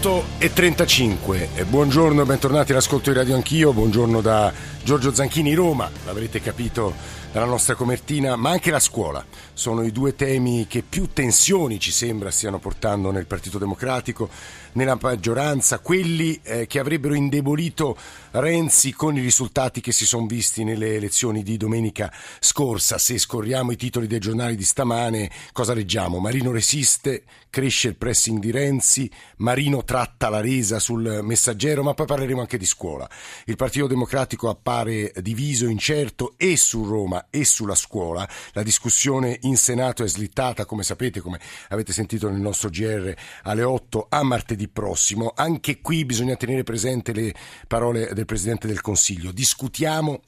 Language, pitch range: Italian, 110-135 Hz